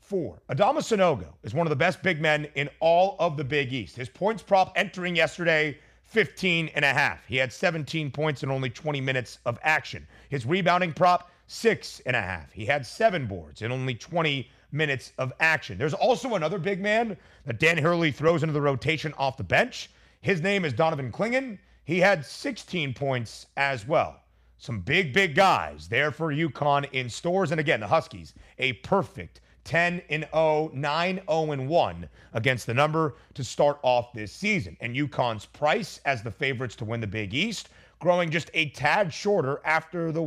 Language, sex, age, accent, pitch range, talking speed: English, male, 30-49, American, 125-170 Hz, 180 wpm